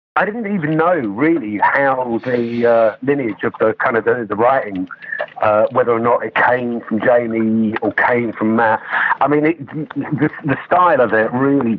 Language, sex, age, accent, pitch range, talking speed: English, male, 50-69, British, 115-145 Hz, 190 wpm